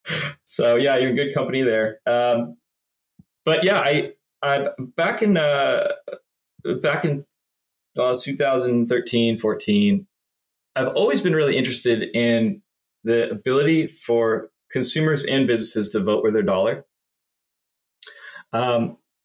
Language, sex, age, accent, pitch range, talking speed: English, male, 20-39, American, 105-140 Hz, 115 wpm